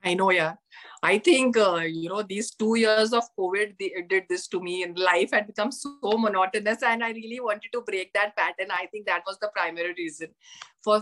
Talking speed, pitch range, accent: 220 wpm, 175-225 Hz, Indian